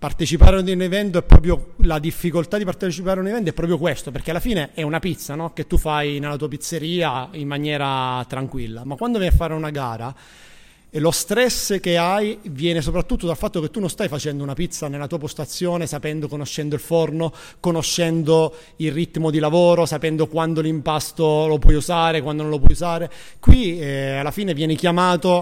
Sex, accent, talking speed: male, native, 200 wpm